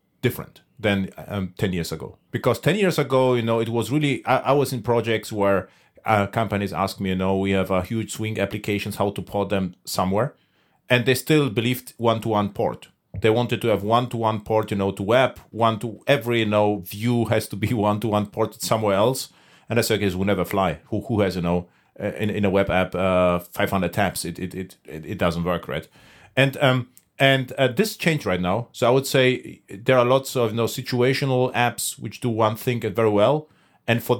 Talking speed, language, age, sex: 225 wpm, English, 40-59, male